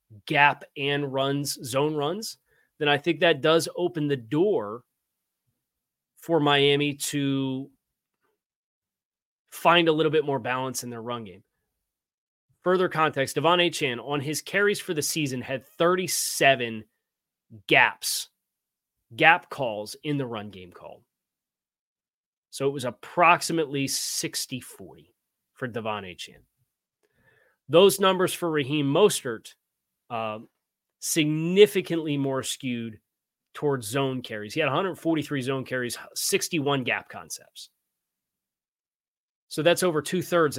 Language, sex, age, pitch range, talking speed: English, male, 30-49, 130-160 Hz, 120 wpm